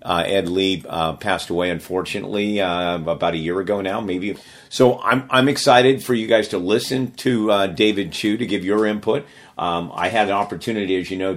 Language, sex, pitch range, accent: English, male, 90-105 Hz, American